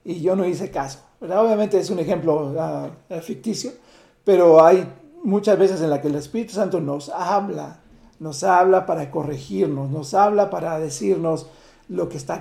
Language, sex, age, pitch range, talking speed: Spanish, male, 50-69, 160-200 Hz, 170 wpm